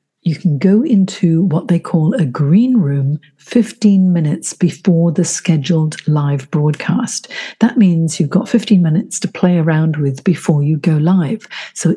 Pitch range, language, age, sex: 155-205 Hz, English, 50-69, female